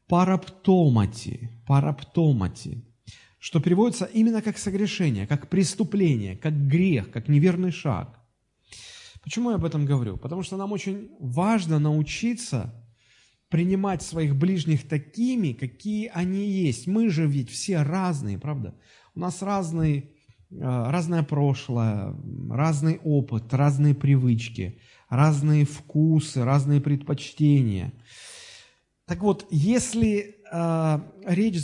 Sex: male